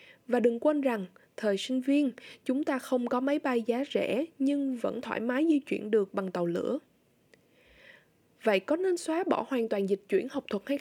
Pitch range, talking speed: 225-300 Hz, 205 wpm